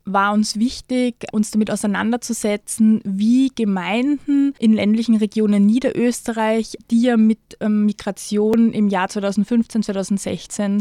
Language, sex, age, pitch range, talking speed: German, female, 20-39, 200-230 Hz, 110 wpm